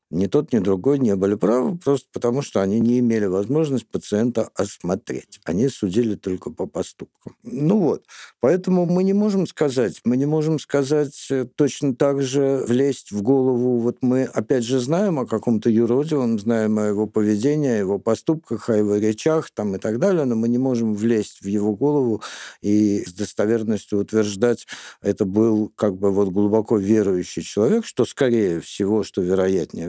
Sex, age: male, 60-79